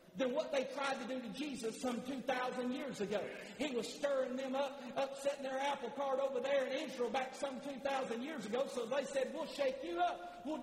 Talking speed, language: 215 wpm, English